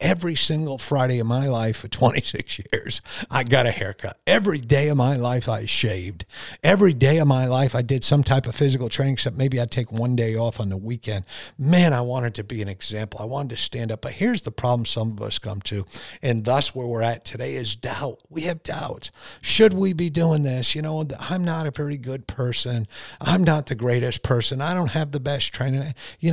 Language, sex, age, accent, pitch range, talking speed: English, male, 50-69, American, 115-155 Hz, 225 wpm